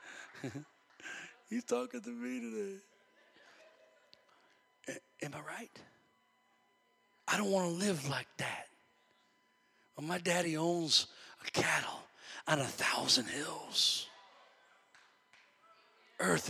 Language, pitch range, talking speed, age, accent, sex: English, 140-175 Hz, 100 wpm, 40-59, American, male